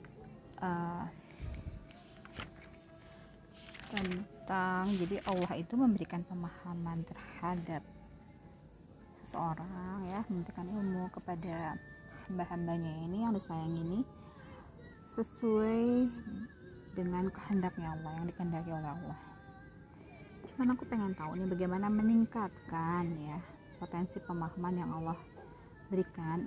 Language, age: Indonesian, 30-49